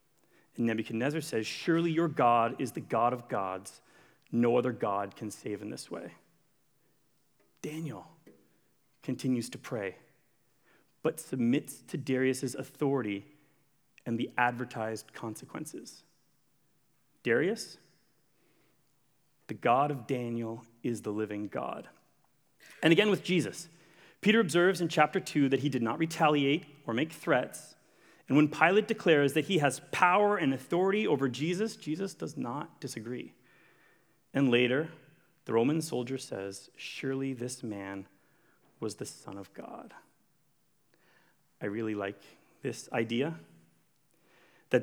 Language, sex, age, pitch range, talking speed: English, male, 30-49, 115-155 Hz, 125 wpm